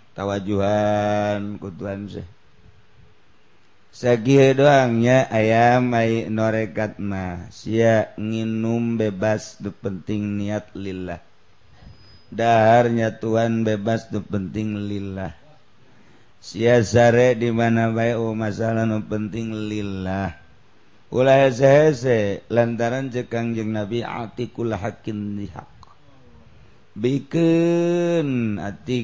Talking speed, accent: 85 wpm, native